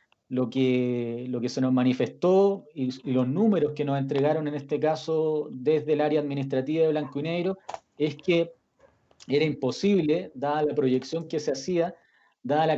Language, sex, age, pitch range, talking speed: Spanish, male, 40-59, 130-165 Hz, 170 wpm